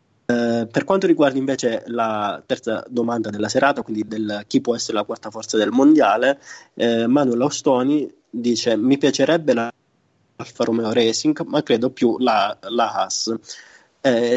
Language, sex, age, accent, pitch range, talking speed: Italian, male, 20-39, native, 110-130 Hz, 145 wpm